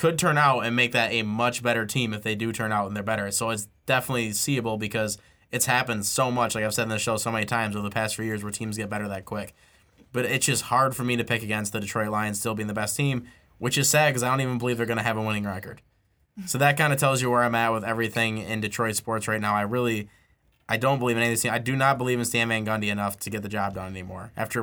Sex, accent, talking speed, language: male, American, 290 wpm, English